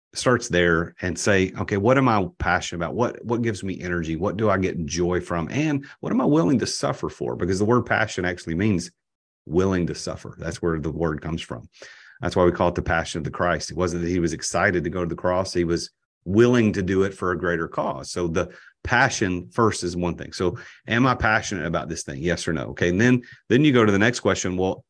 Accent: American